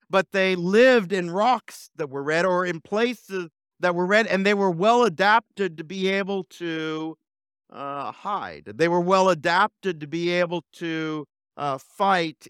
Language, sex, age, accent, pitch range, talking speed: English, male, 50-69, American, 130-185 Hz, 160 wpm